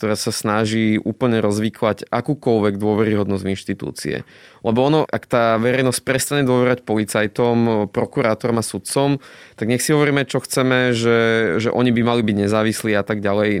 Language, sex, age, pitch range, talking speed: Slovak, male, 20-39, 110-130 Hz, 160 wpm